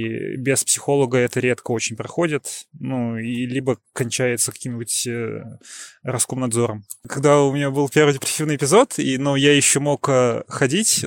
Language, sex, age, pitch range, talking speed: Russian, male, 20-39, 130-160 Hz, 135 wpm